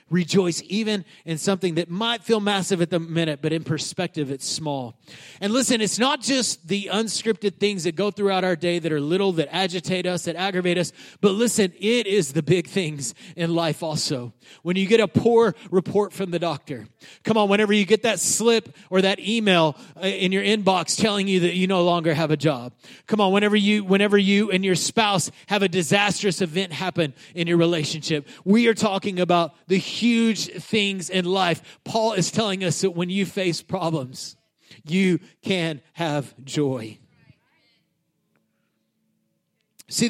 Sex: male